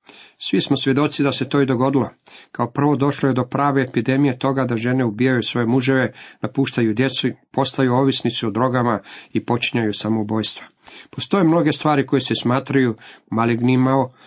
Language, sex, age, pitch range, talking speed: Croatian, male, 50-69, 110-130 Hz, 155 wpm